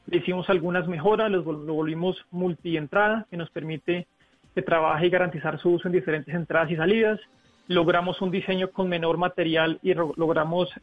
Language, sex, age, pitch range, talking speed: Spanish, male, 40-59, 165-190 Hz, 165 wpm